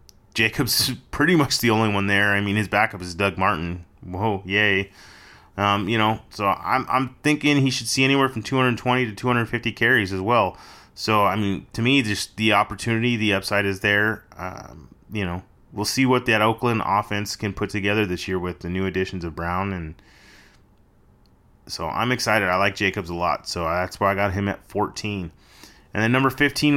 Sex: male